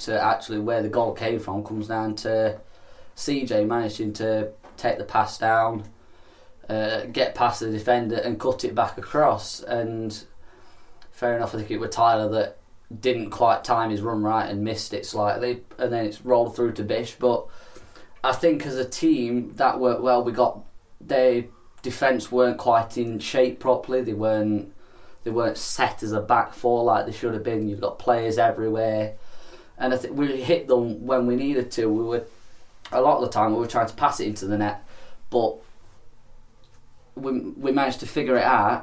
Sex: male